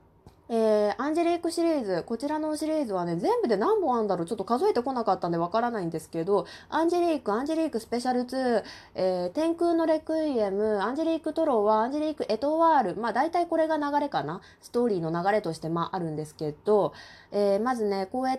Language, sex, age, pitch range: Japanese, female, 20-39, 190-315 Hz